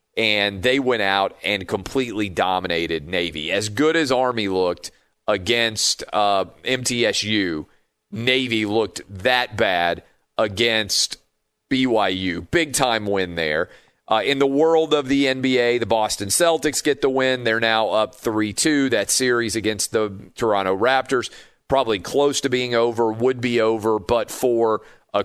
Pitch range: 105-125 Hz